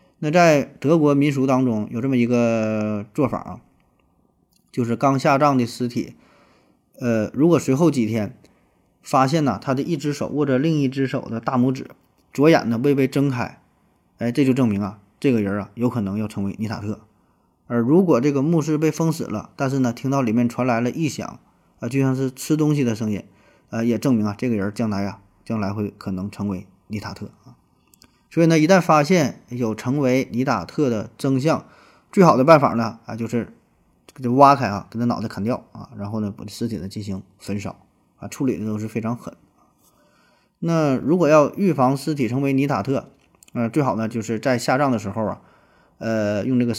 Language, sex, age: Chinese, male, 20-39